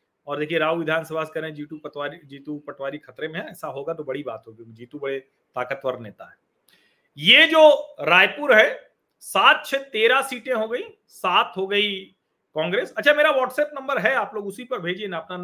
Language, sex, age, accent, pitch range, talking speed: Hindi, male, 40-59, native, 170-255 Hz, 45 wpm